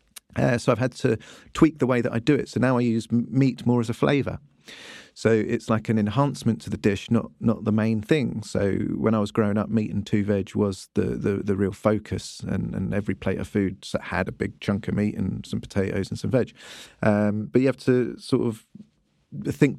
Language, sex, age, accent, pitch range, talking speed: English, male, 30-49, British, 105-120 Hz, 235 wpm